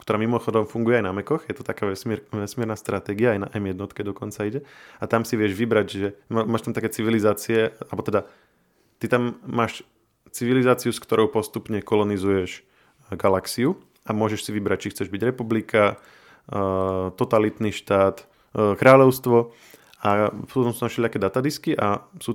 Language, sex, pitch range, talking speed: Slovak, male, 100-120 Hz, 155 wpm